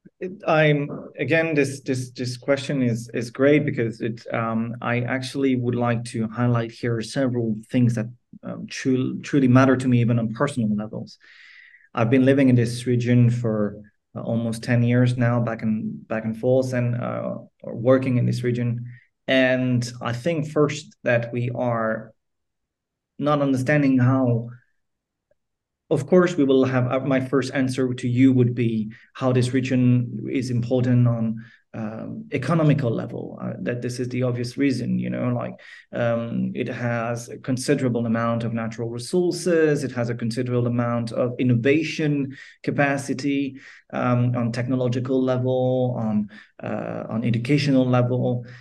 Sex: male